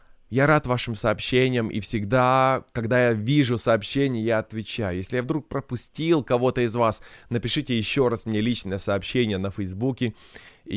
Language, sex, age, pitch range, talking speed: Russian, male, 20-39, 115-165 Hz, 155 wpm